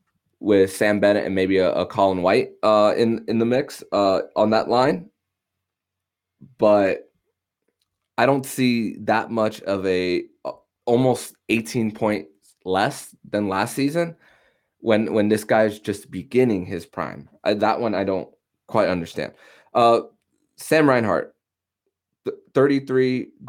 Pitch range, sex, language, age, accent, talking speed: 95-115 Hz, male, English, 20-39, American, 140 wpm